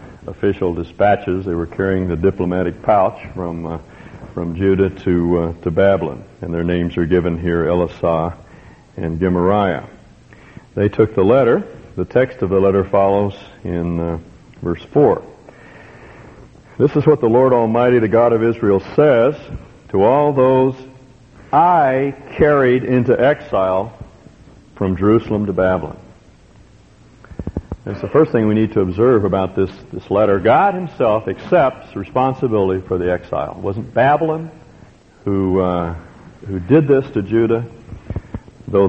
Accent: American